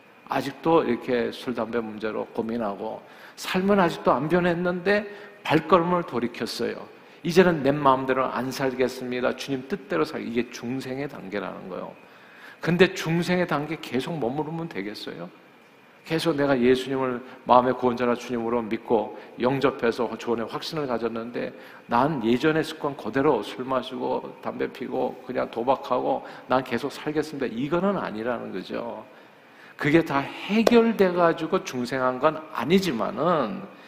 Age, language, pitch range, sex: 50-69, Korean, 115-165 Hz, male